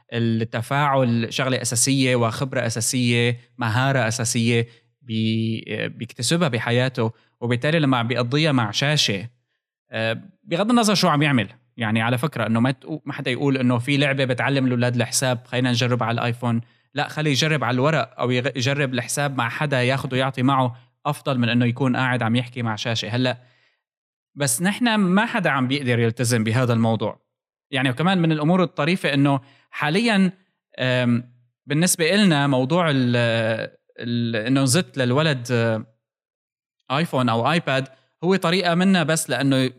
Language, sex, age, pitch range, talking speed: Arabic, male, 20-39, 120-150 Hz, 135 wpm